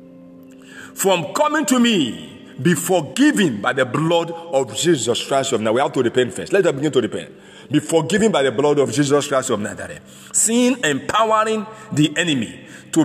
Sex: male